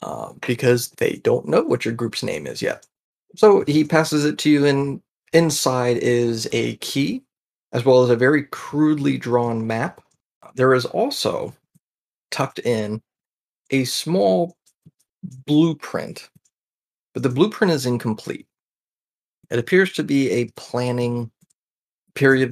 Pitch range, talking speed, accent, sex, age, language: 115-140 Hz, 135 wpm, American, male, 30-49, English